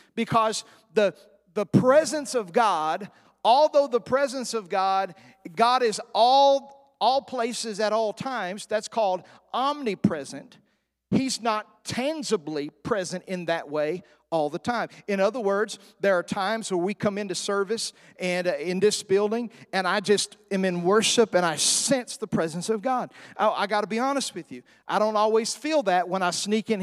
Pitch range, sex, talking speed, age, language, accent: 190-240 Hz, male, 175 wpm, 40-59, English, American